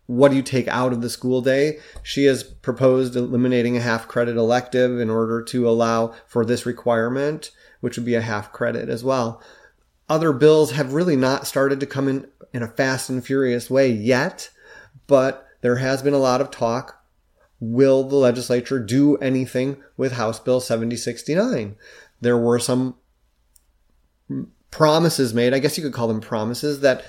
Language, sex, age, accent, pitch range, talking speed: English, male, 30-49, American, 120-140 Hz, 170 wpm